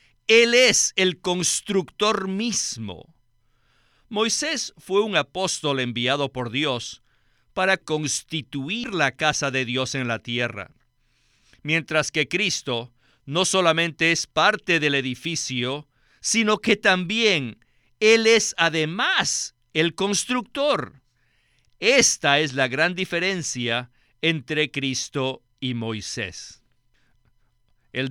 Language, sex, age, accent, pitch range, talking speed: Spanish, male, 50-69, Mexican, 125-180 Hz, 100 wpm